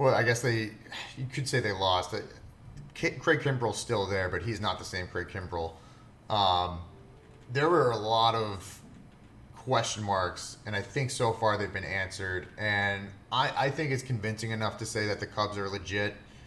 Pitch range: 100-115 Hz